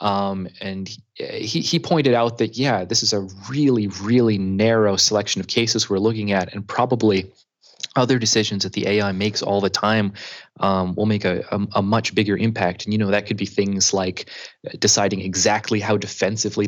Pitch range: 95-110 Hz